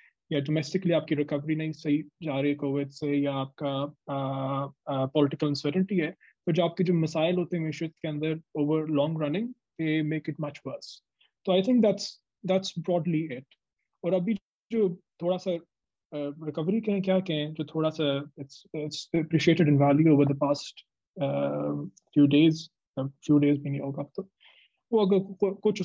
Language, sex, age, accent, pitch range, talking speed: English, male, 20-39, Indian, 140-165 Hz, 130 wpm